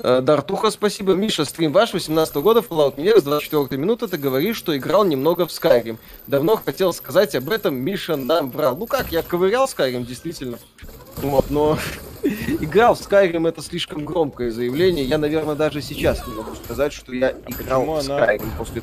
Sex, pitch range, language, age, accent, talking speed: male, 130-185 Hz, Russian, 20-39, native, 175 wpm